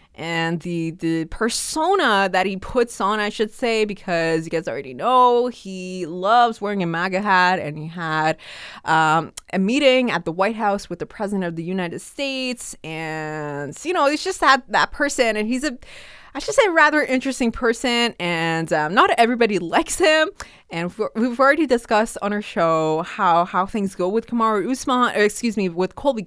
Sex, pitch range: female, 180-260 Hz